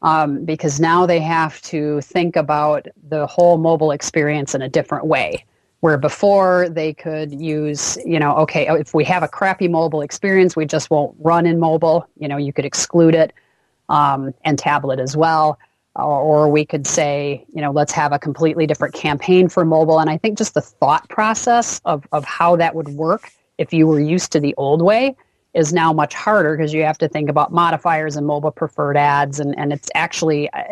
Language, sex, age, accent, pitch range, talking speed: English, female, 30-49, American, 145-165 Hz, 200 wpm